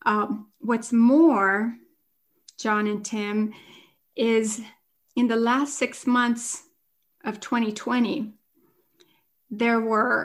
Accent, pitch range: American, 210-280 Hz